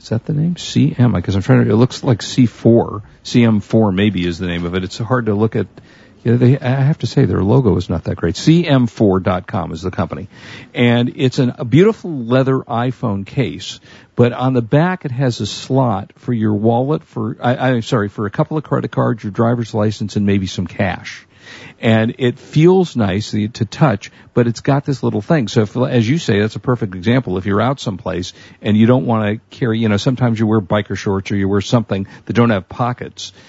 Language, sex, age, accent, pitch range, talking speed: English, male, 50-69, American, 100-125 Hz, 220 wpm